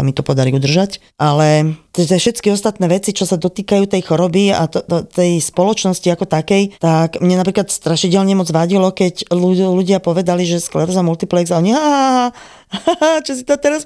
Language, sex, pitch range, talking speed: Slovak, female, 155-200 Hz, 180 wpm